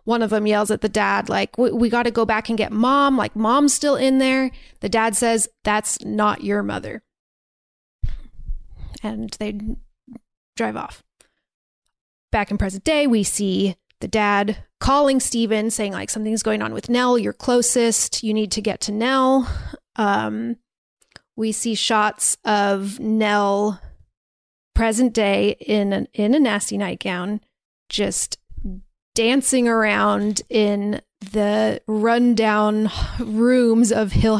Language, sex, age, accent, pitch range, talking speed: English, female, 30-49, American, 210-245 Hz, 140 wpm